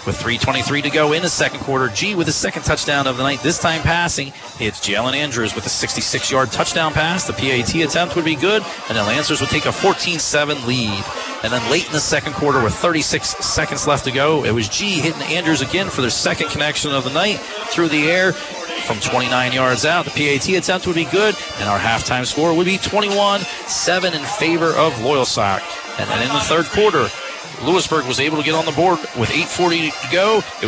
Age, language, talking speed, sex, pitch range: 40-59, English, 215 wpm, male, 130-170 Hz